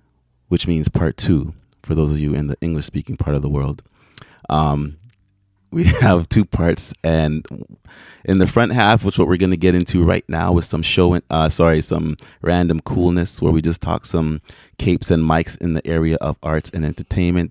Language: English